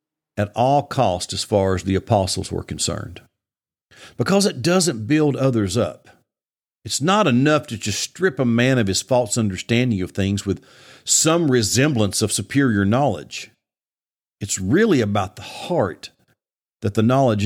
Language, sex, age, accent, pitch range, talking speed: English, male, 50-69, American, 115-160 Hz, 150 wpm